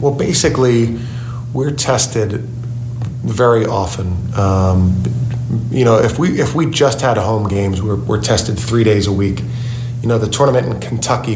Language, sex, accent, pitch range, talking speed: English, male, American, 105-120 Hz, 160 wpm